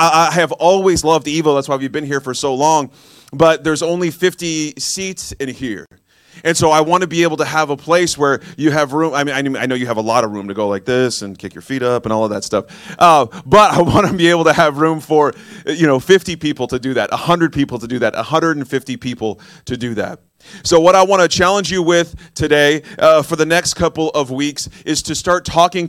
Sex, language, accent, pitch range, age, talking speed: male, English, American, 135-165 Hz, 30-49, 250 wpm